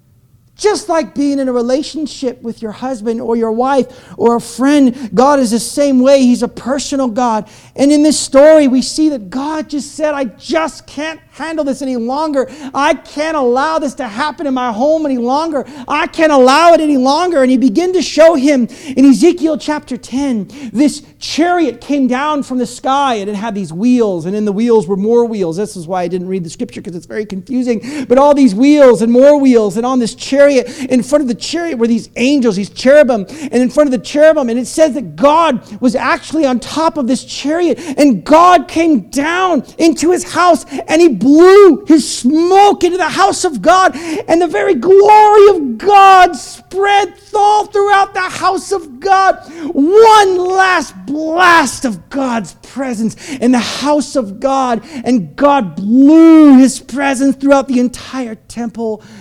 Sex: male